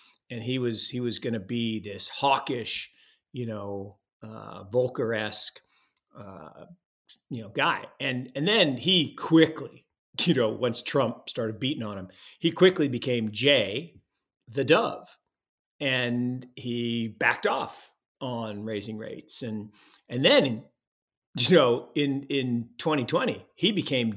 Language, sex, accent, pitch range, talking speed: English, male, American, 110-135 Hz, 130 wpm